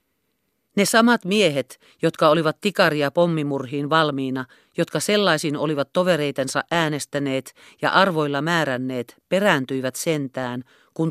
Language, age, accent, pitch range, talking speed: Finnish, 40-59, native, 135-185 Hz, 105 wpm